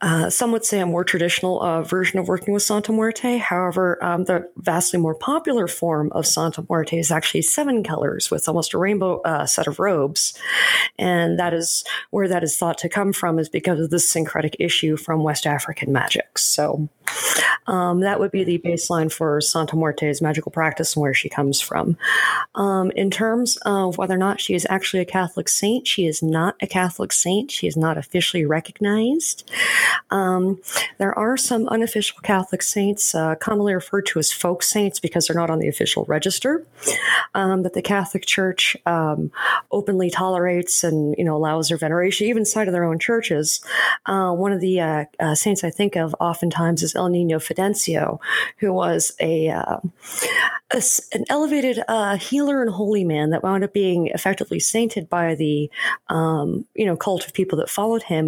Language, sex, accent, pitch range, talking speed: English, female, American, 165-205 Hz, 185 wpm